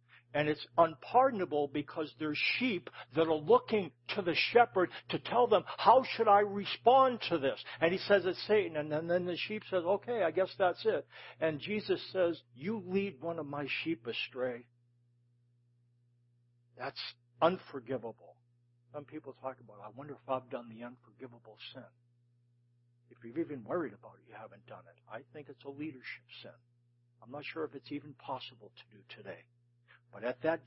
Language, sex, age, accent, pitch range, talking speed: English, male, 60-79, American, 120-160 Hz, 175 wpm